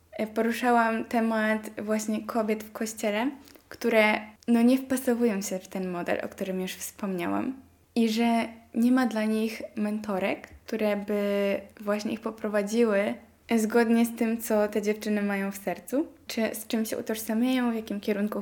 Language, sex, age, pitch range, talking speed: Polish, female, 10-29, 205-235 Hz, 150 wpm